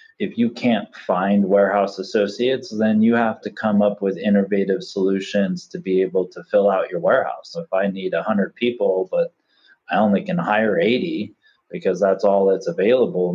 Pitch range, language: 95-115 Hz, English